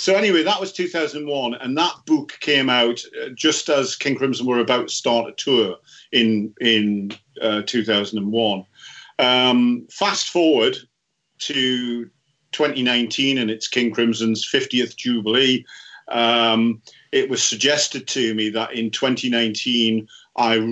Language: English